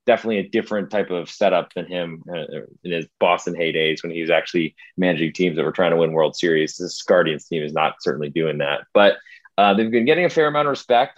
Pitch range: 90-120 Hz